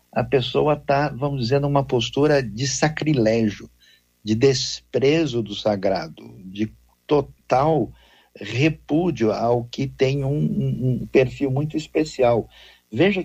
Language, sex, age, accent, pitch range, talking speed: Portuguese, male, 60-79, Brazilian, 110-145 Hz, 115 wpm